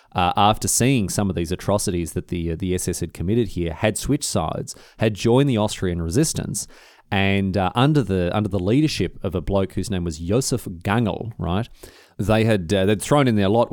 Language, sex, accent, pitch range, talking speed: English, male, Australian, 90-120 Hz, 205 wpm